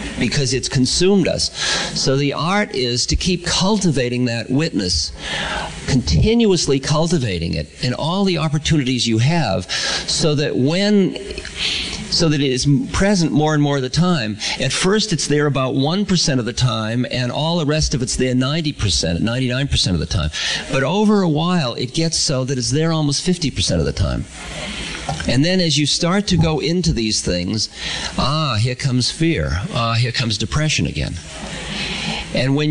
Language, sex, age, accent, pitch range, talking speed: English, male, 50-69, American, 120-165 Hz, 170 wpm